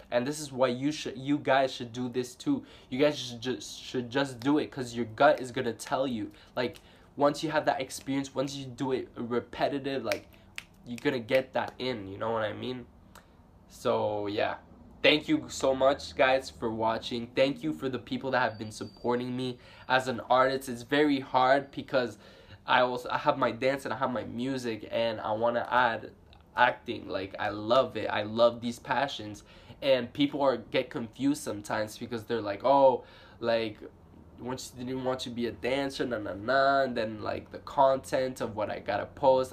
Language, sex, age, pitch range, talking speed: English, male, 10-29, 110-135 Hz, 200 wpm